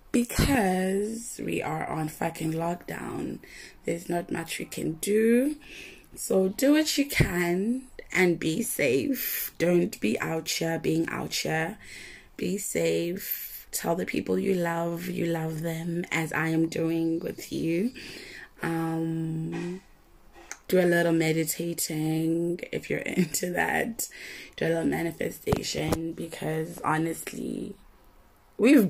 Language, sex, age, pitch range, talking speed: English, female, 20-39, 165-200 Hz, 125 wpm